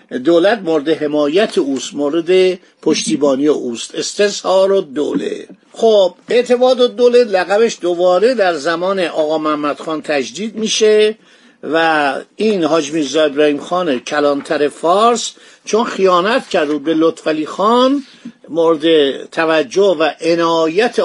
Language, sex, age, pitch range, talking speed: Persian, male, 50-69, 155-210 Hz, 115 wpm